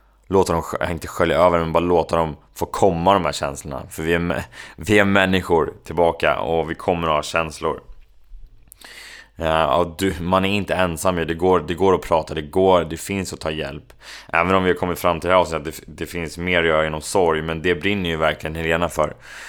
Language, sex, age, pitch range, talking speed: Swedish, male, 20-39, 80-90 Hz, 210 wpm